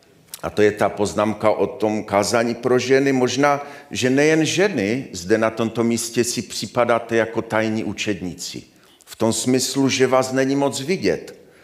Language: Czech